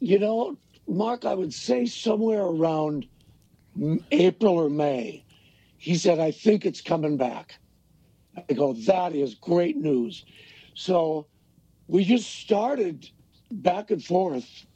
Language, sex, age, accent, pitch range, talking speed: English, male, 60-79, American, 150-195 Hz, 125 wpm